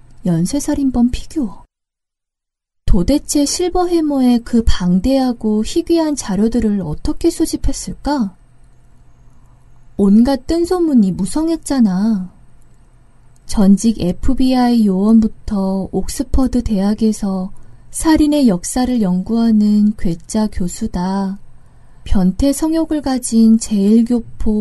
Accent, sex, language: native, female, Korean